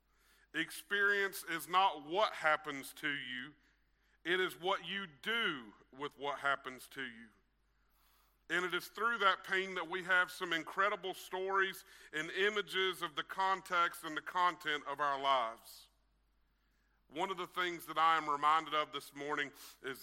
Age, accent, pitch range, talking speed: 50-69, American, 135-165 Hz, 155 wpm